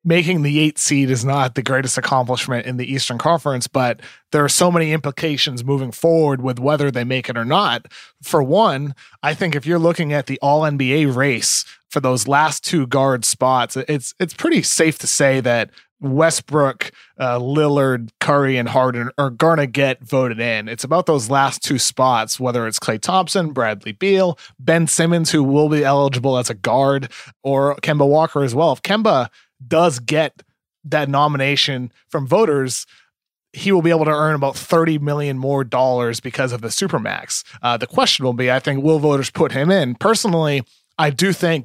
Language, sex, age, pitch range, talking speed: English, male, 30-49, 130-160 Hz, 185 wpm